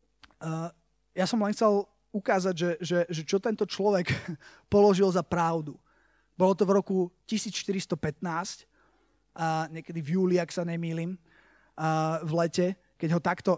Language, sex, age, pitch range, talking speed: Slovak, male, 20-39, 165-200 Hz, 135 wpm